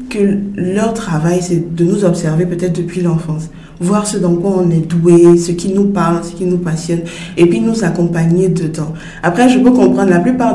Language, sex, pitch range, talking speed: French, female, 165-185 Hz, 205 wpm